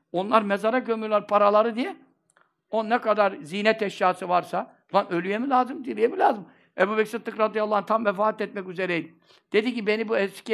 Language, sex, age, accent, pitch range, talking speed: Turkish, male, 60-79, native, 180-245 Hz, 175 wpm